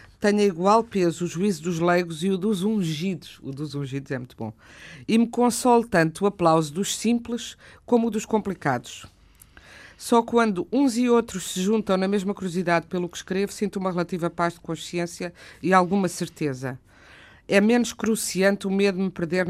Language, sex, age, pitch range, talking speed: Portuguese, female, 50-69, 150-190 Hz, 180 wpm